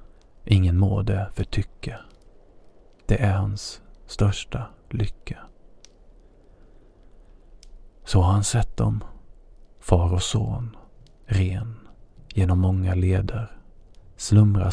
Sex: male